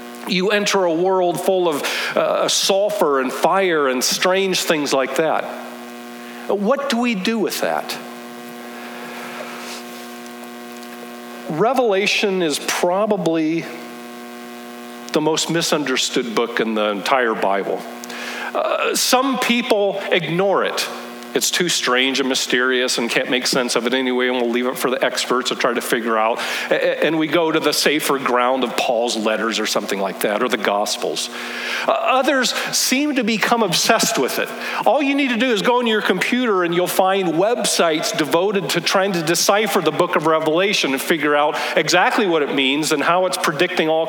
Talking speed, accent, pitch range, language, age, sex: 165 wpm, American, 125-200 Hz, English, 50-69, male